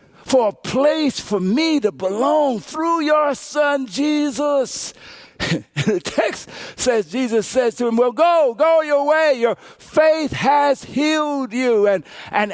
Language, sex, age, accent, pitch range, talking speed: English, male, 60-79, American, 185-275 Hz, 145 wpm